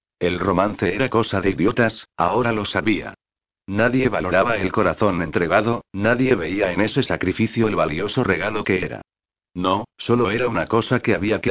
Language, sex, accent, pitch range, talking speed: Spanish, male, Spanish, 95-120 Hz, 165 wpm